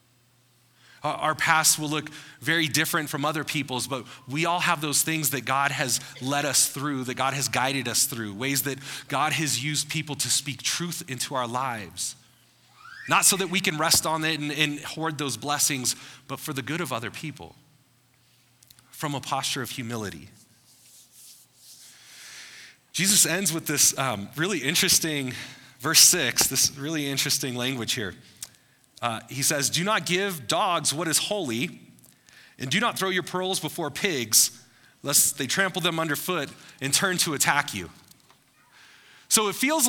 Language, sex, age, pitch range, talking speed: English, male, 30-49, 130-165 Hz, 165 wpm